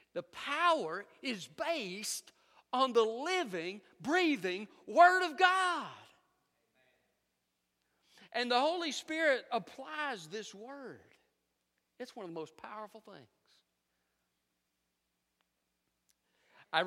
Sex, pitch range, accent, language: male, 125-175 Hz, American, English